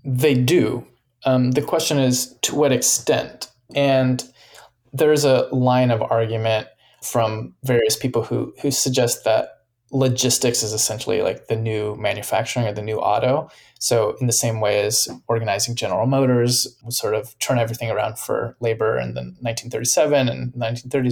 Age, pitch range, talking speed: 20-39, 115-135 Hz, 150 wpm